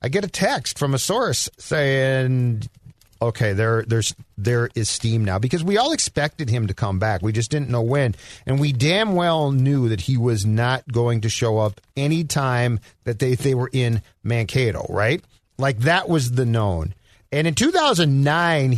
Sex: male